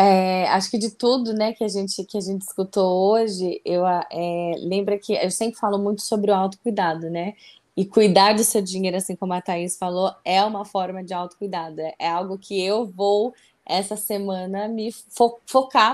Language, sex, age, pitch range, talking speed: Portuguese, female, 20-39, 185-215 Hz, 190 wpm